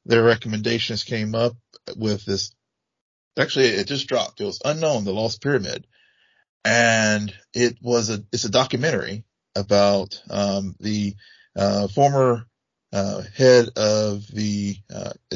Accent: American